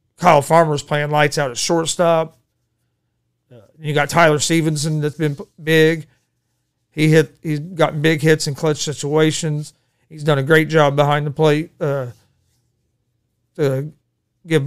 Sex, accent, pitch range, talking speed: male, American, 130-160 Hz, 140 wpm